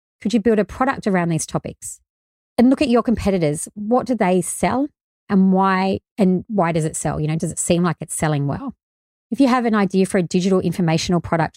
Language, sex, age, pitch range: English, female, 30-49, 155-205 Hz